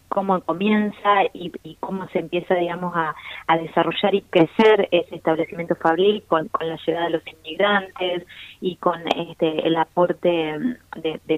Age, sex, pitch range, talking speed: 20-39, female, 165-200 Hz, 160 wpm